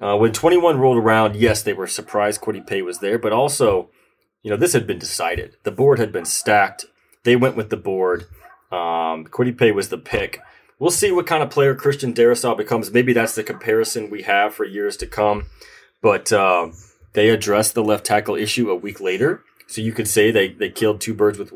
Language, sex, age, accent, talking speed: English, male, 30-49, American, 210 wpm